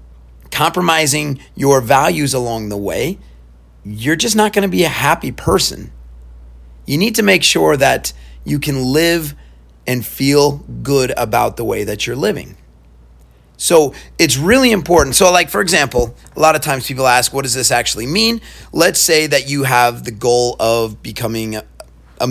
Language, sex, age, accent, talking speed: English, male, 30-49, American, 165 wpm